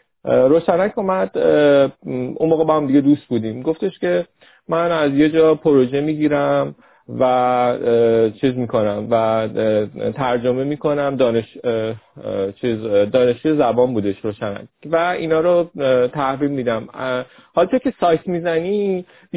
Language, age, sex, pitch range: Persian, 30-49, male, 125-165 Hz